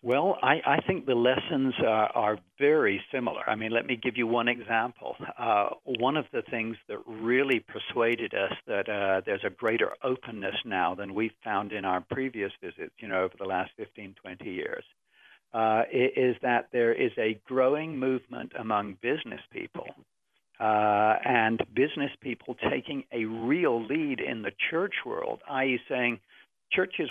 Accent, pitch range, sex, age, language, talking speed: American, 110-130 Hz, male, 60-79, English, 165 wpm